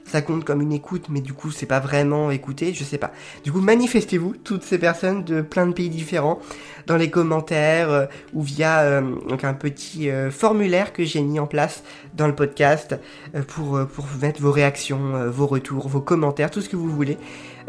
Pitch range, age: 135-165 Hz, 20-39